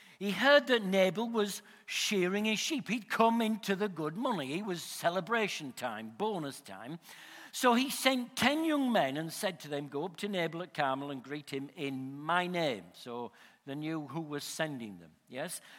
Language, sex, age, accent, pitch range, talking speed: English, male, 60-79, British, 175-245 Hz, 190 wpm